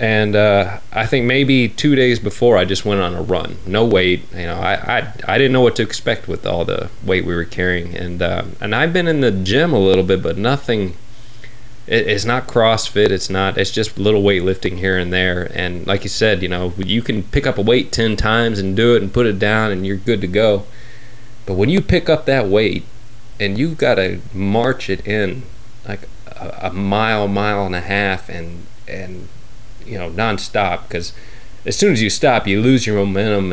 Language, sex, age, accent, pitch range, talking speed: English, male, 30-49, American, 95-115 Hz, 220 wpm